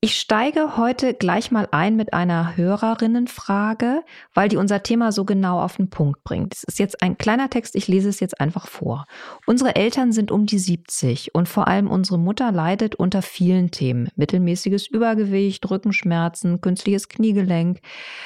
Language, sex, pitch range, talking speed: German, female, 175-210 Hz, 170 wpm